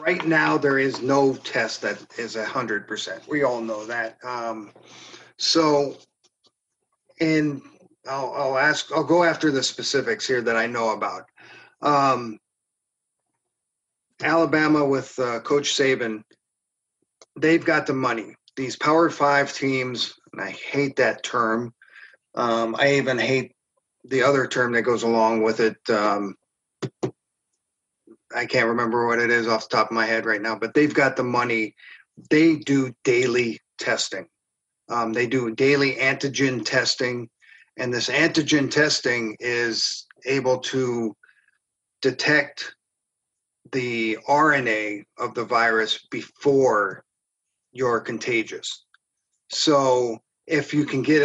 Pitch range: 115-145 Hz